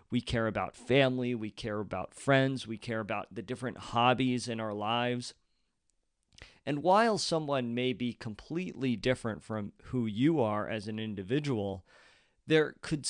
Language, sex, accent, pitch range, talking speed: English, male, American, 110-130 Hz, 150 wpm